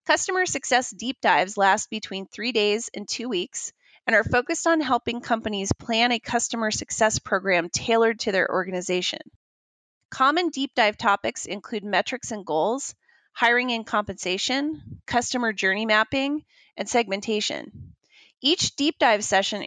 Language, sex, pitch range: English, female, 205-265 Hz